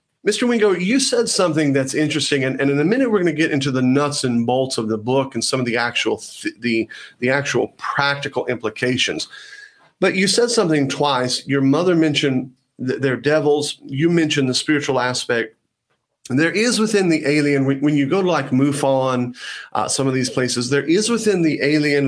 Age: 40-59